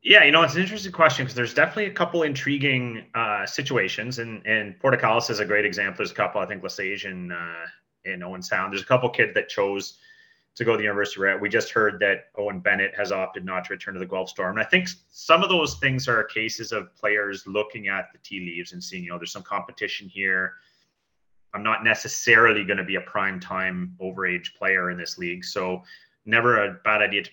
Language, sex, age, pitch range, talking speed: English, male, 30-49, 95-130 Hz, 235 wpm